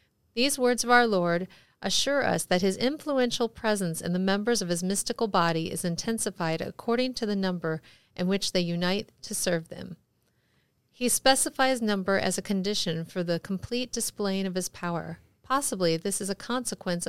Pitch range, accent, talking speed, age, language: 180-230 Hz, American, 170 wpm, 40-59, English